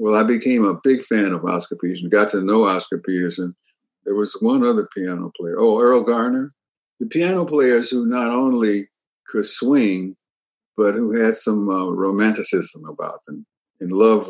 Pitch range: 100-160 Hz